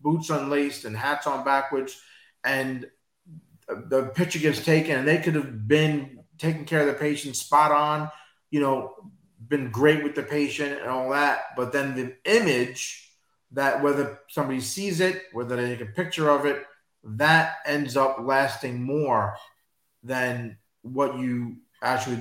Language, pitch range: English, 125-155 Hz